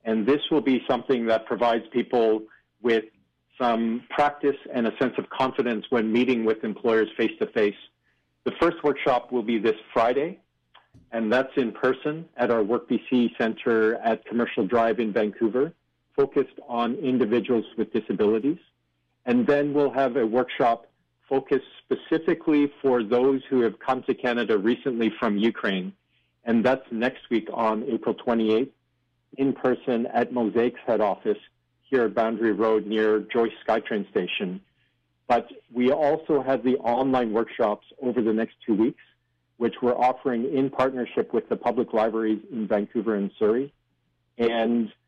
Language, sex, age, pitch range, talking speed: English, male, 50-69, 110-135 Hz, 150 wpm